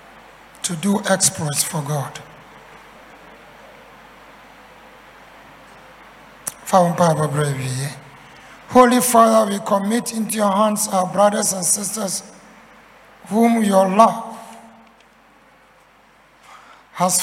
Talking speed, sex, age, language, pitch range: 70 wpm, male, 60-79, English, 180-215 Hz